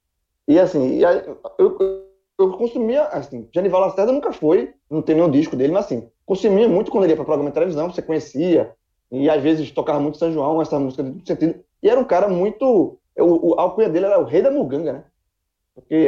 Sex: male